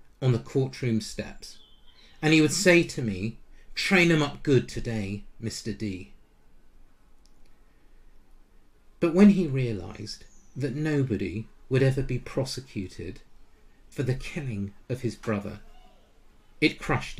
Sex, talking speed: male, 120 wpm